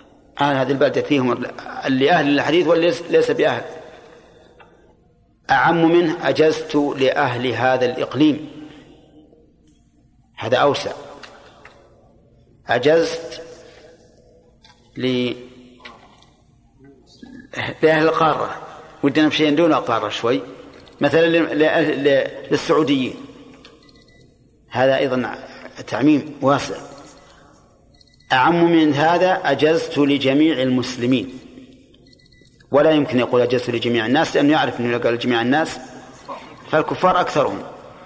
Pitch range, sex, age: 125-160 Hz, male, 50-69